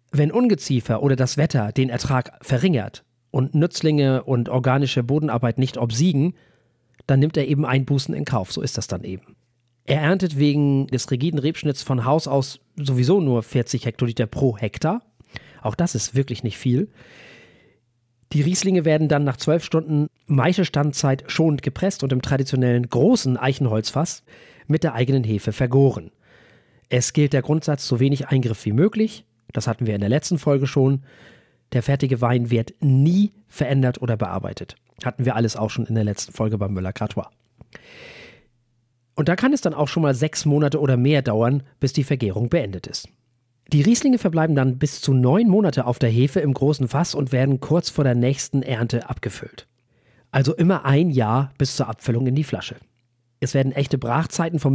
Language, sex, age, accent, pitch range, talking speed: German, male, 40-59, German, 120-150 Hz, 175 wpm